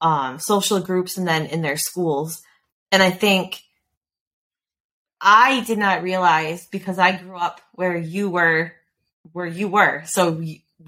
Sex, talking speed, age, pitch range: female, 150 wpm, 20-39, 160-190 Hz